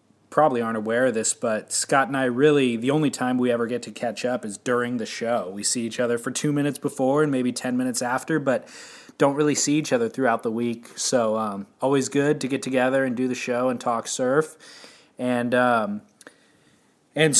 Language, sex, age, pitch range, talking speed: English, male, 20-39, 115-145 Hz, 215 wpm